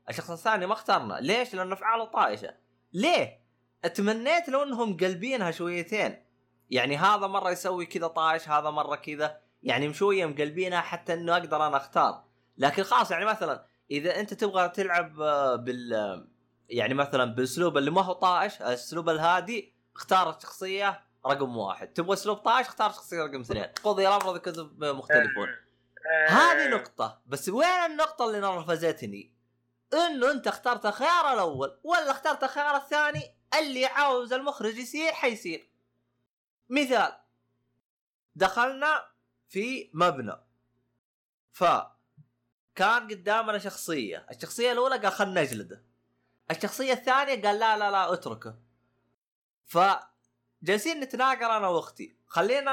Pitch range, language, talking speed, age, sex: 150-245 Hz, Arabic, 125 wpm, 20-39, male